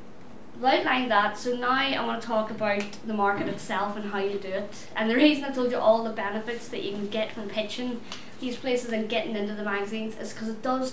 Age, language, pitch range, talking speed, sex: 20-39, English, 215-255 Hz, 235 wpm, female